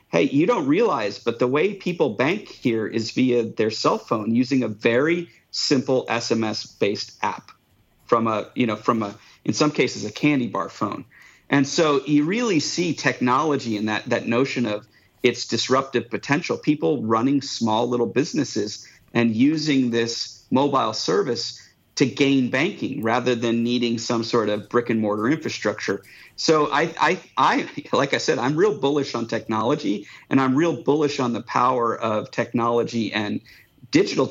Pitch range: 110-135 Hz